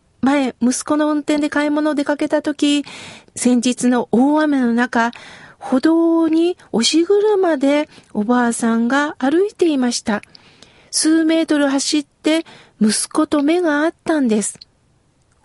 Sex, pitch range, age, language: female, 235-300 Hz, 40-59, Japanese